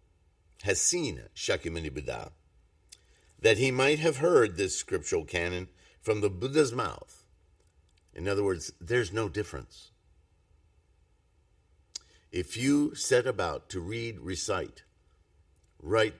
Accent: American